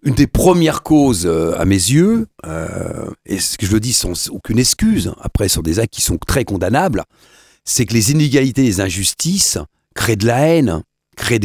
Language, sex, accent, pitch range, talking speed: French, male, French, 105-155 Hz, 200 wpm